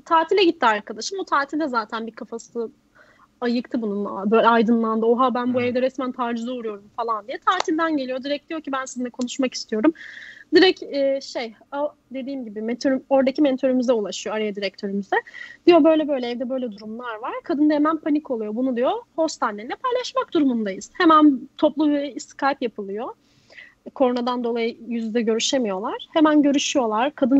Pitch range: 240-315 Hz